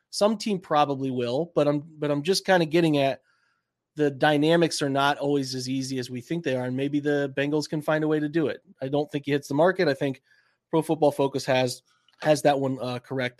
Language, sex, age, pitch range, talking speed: English, male, 30-49, 145-180 Hz, 240 wpm